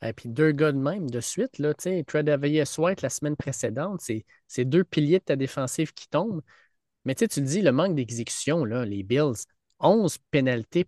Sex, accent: male, Canadian